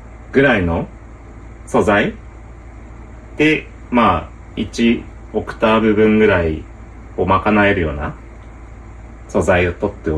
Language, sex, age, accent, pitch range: Japanese, male, 30-49, native, 95-115 Hz